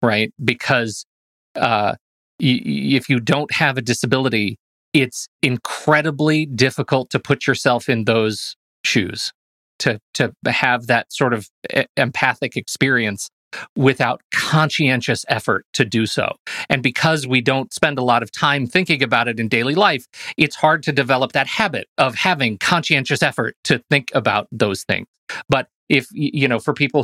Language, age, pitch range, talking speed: English, 40-59, 120-150 Hz, 150 wpm